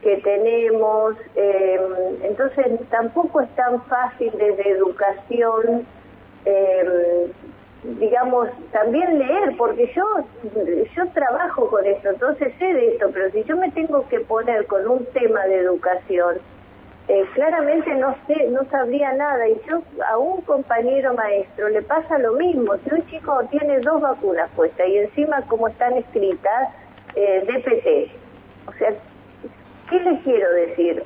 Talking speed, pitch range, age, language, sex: 140 wpm, 205-300 Hz, 40-59, Spanish, female